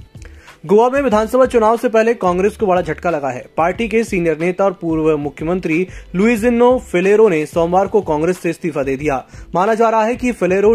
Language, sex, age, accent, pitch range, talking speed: Hindi, male, 20-39, native, 160-205 Hz, 195 wpm